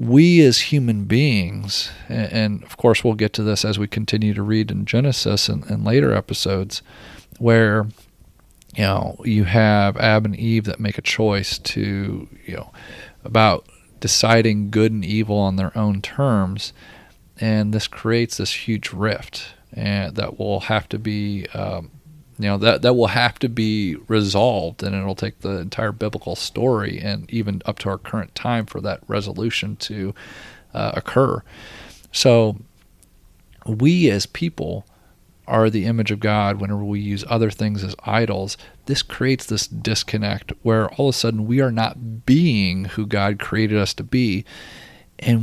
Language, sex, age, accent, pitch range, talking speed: English, male, 40-59, American, 100-115 Hz, 165 wpm